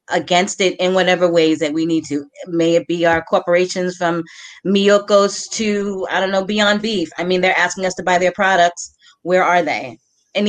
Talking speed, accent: 200 wpm, American